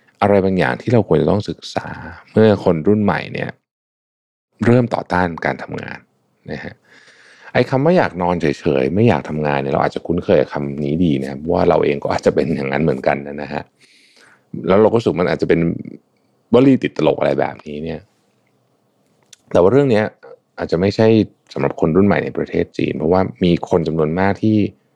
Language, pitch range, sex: Thai, 75-100 Hz, male